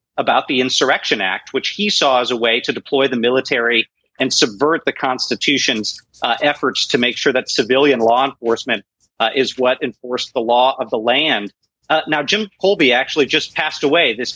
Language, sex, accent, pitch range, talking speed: English, male, American, 125-155 Hz, 190 wpm